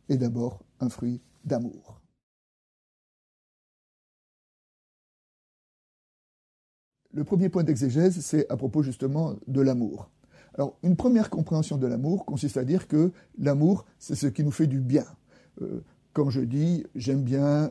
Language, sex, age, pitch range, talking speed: French, male, 50-69, 130-175 Hz, 130 wpm